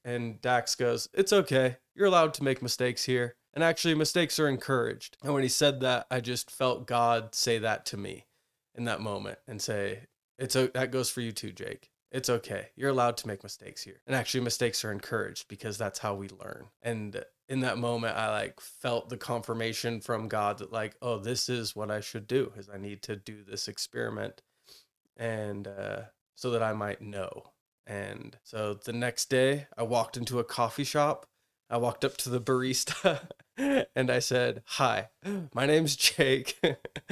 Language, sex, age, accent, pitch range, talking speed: English, male, 20-39, American, 115-155 Hz, 190 wpm